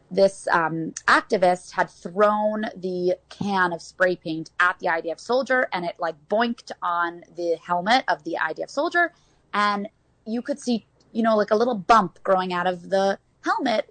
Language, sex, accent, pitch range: English, female, American, 180-250 Hz